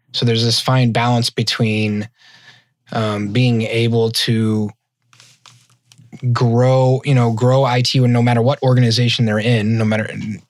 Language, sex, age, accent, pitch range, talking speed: English, male, 20-39, American, 115-135 Hz, 130 wpm